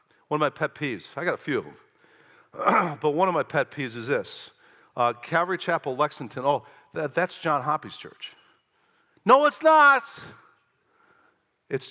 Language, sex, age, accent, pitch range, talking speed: English, male, 50-69, American, 150-215 Hz, 165 wpm